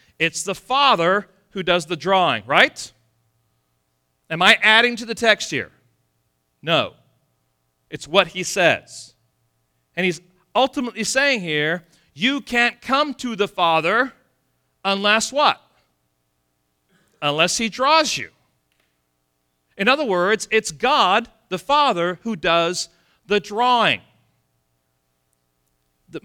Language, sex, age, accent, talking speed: English, male, 40-59, American, 110 wpm